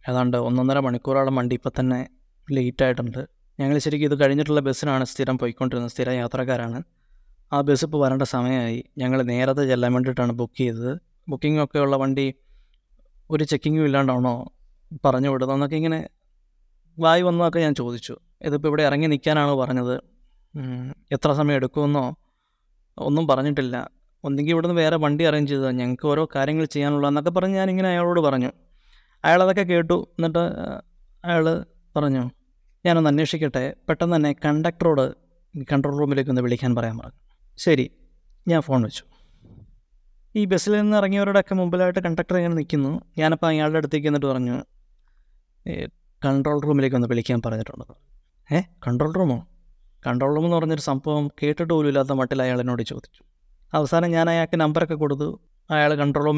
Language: English